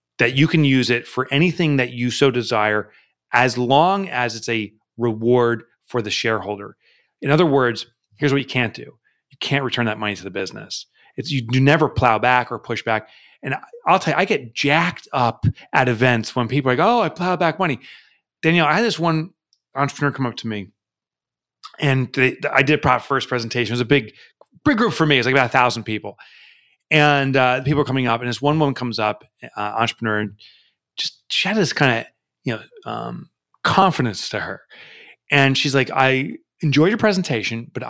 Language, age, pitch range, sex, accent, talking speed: English, 30-49, 120-150 Hz, male, American, 205 wpm